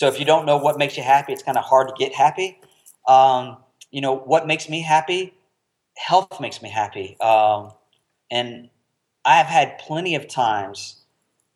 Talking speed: 180 wpm